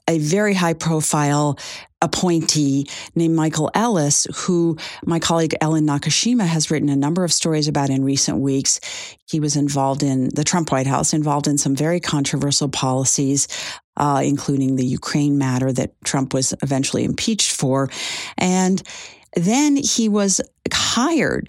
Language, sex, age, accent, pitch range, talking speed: English, female, 50-69, American, 145-180 Hz, 150 wpm